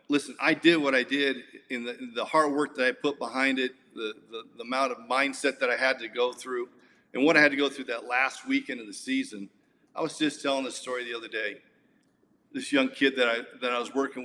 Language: English